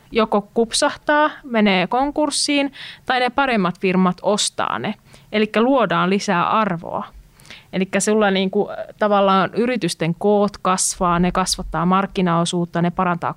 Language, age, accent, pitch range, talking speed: Finnish, 30-49, native, 170-215 Hz, 110 wpm